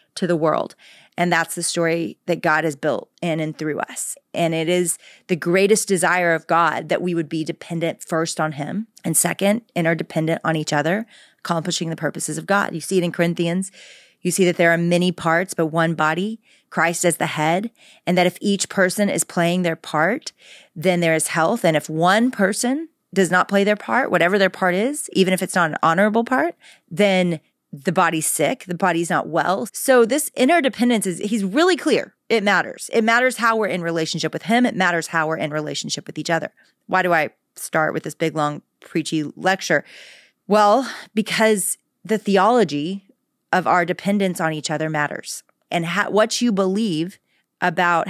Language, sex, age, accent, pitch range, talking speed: English, female, 30-49, American, 165-210 Hz, 190 wpm